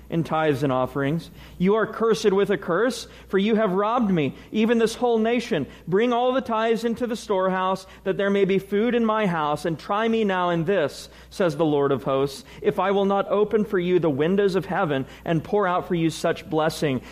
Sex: male